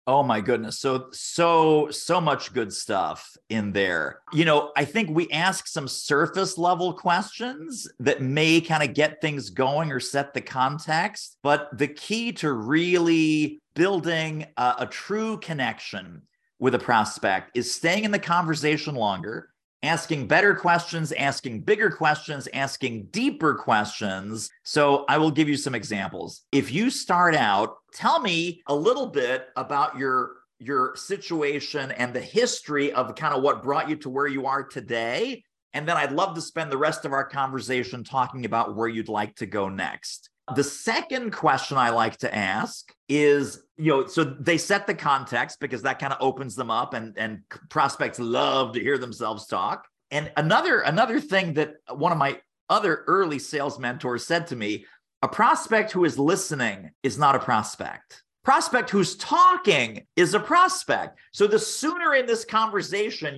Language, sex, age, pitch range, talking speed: English, male, 40-59, 135-195 Hz, 170 wpm